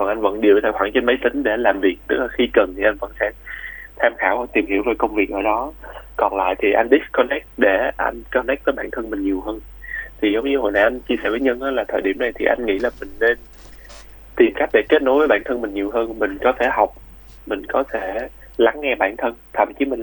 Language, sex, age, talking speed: Vietnamese, male, 20-39, 265 wpm